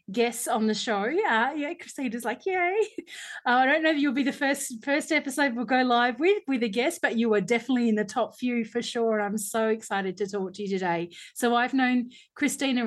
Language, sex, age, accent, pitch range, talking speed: English, female, 30-49, Australian, 195-240 Hz, 235 wpm